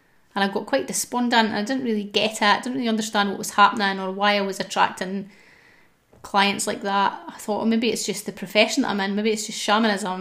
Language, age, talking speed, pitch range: English, 30-49, 240 wpm, 200-225 Hz